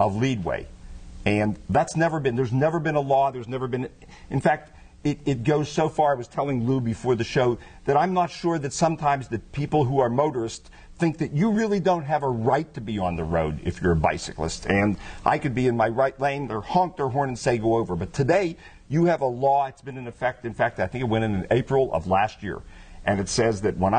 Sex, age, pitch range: male, 50-69, 110-150 Hz